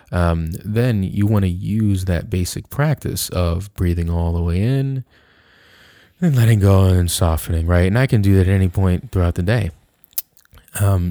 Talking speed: 180 wpm